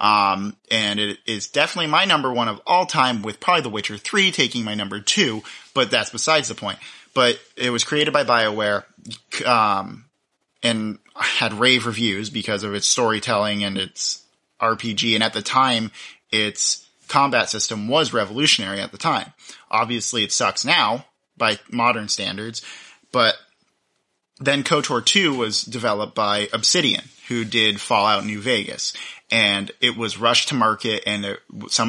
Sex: male